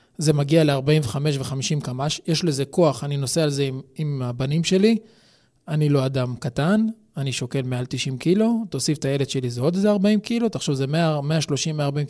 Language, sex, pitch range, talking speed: Hebrew, male, 140-175 Hz, 185 wpm